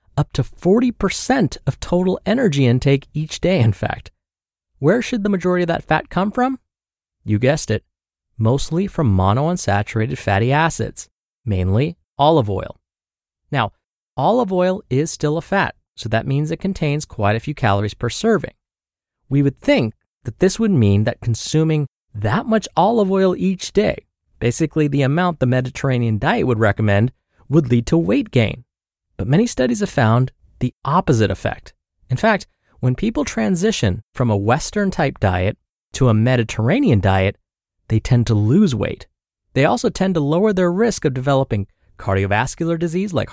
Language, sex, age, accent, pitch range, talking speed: English, male, 30-49, American, 110-175 Hz, 160 wpm